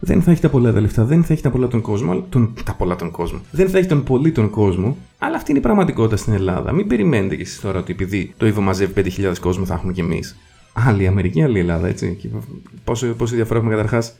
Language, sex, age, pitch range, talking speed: Greek, male, 30-49, 95-115 Hz, 245 wpm